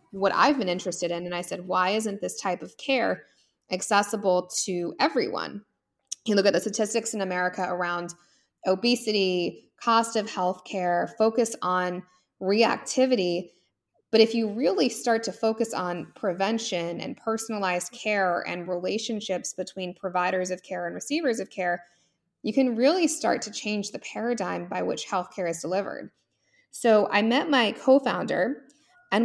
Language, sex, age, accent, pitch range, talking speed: English, female, 20-39, American, 180-240 Hz, 150 wpm